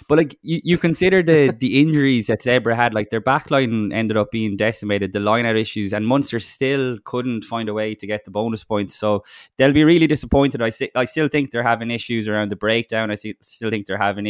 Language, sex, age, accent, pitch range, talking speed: English, male, 20-39, Irish, 105-125 Hz, 230 wpm